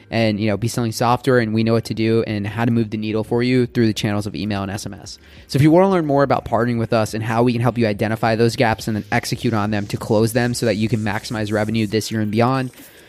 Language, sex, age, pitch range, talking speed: English, male, 20-39, 115-135 Hz, 300 wpm